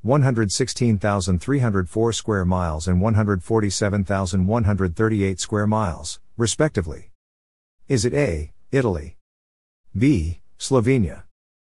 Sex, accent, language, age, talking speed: male, American, English, 50-69, 70 wpm